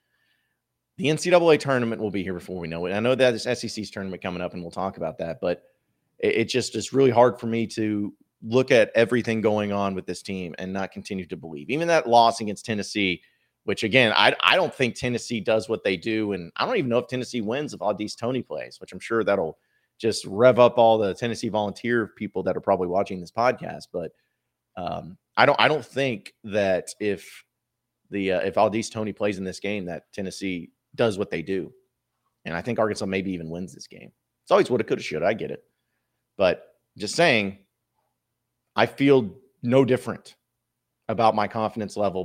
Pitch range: 95-125 Hz